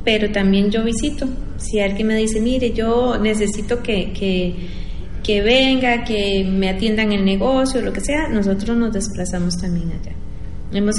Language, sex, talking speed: Spanish, female, 160 wpm